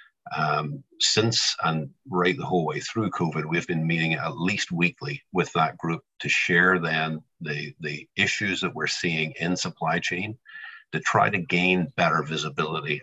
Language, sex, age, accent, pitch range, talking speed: English, male, 50-69, American, 80-90 Hz, 165 wpm